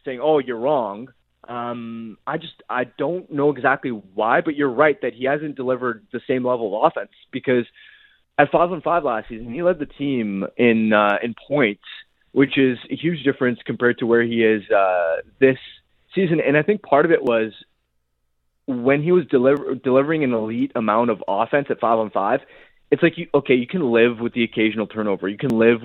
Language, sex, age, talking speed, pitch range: English, male, 20-39, 195 wpm, 115-140 Hz